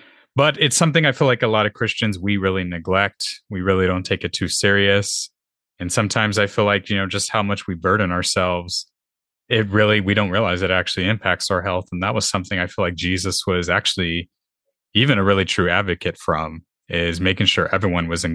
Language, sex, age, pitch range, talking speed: English, male, 20-39, 90-105 Hz, 215 wpm